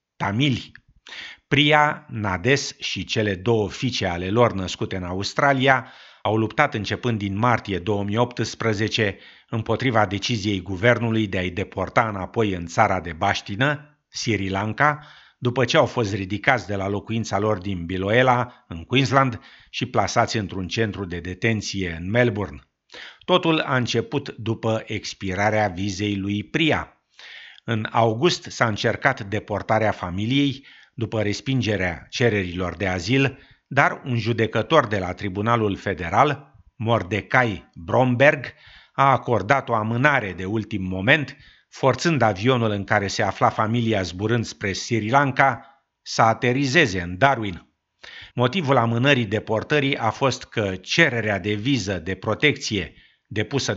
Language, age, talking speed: Romanian, 50-69, 125 wpm